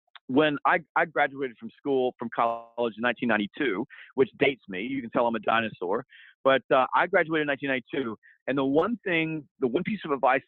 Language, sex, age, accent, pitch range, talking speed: English, male, 40-59, American, 120-150 Hz, 195 wpm